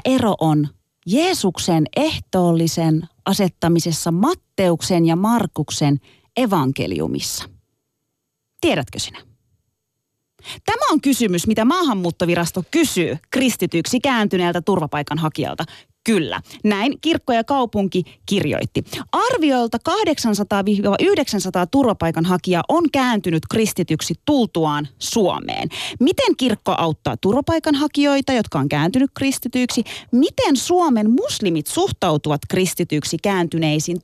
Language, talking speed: Finnish, 85 wpm